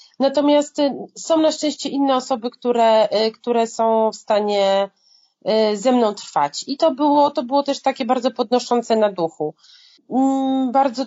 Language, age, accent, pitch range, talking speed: Polish, 30-49, native, 225-270 Hz, 140 wpm